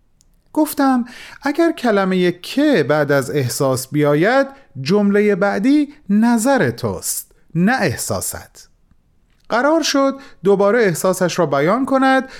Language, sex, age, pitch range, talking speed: Persian, male, 30-49, 160-235 Hz, 100 wpm